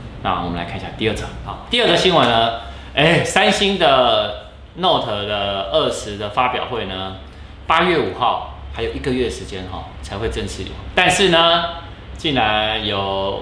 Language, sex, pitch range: Chinese, male, 95-130 Hz